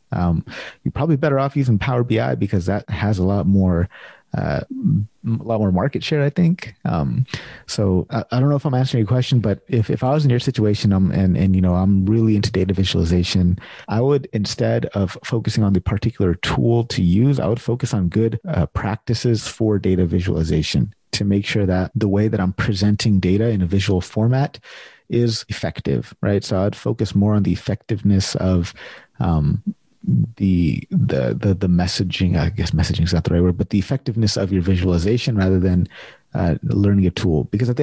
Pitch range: 95-115 Hz